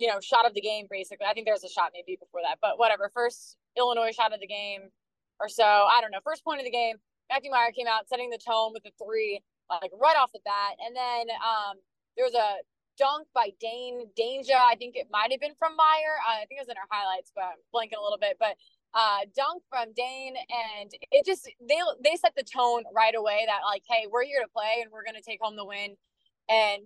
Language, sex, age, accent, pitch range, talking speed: English, female, 20-39, American, 210-260 Hz, 250 wpm